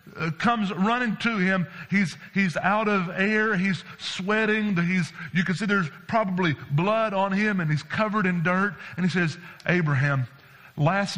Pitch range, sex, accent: 155-190 Hz, male, American